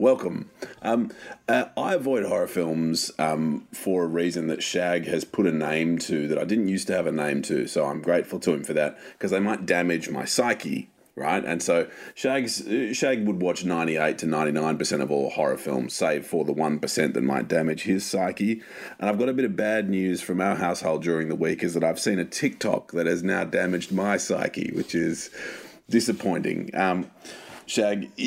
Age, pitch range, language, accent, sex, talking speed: 30-49, 80-105 Hz, English, Australian, male, 205 wpm